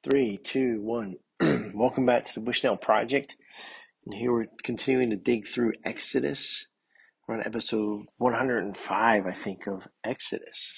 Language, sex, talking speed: English, male, 140 wpm